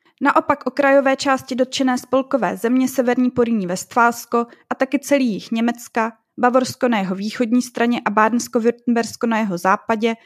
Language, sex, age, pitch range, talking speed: Czech, female, 20-39, 210-255 Hz, 150 wpm